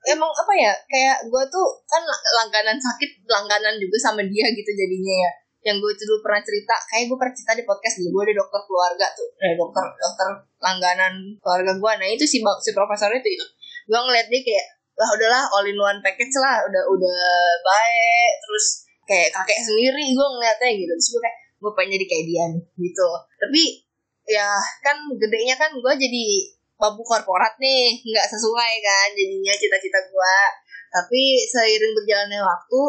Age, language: 20-39, Indonesian